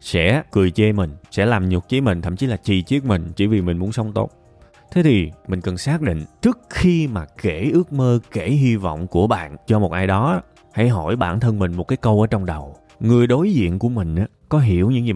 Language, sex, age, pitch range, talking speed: Vietnamese, male, 20-39, 95-125 Hz, 250 wpm